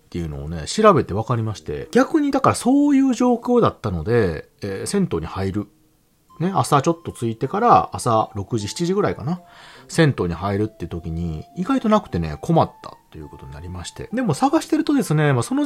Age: 40-59